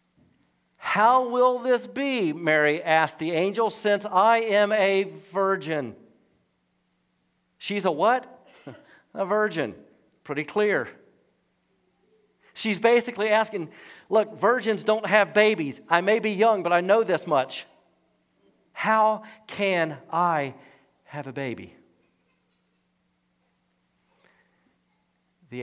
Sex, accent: male, American